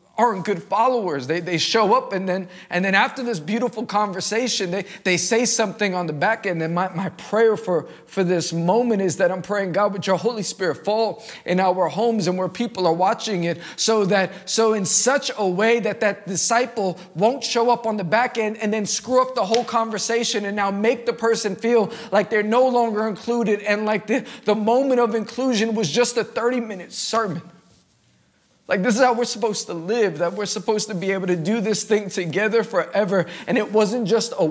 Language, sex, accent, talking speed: English, male, American, 210 wpm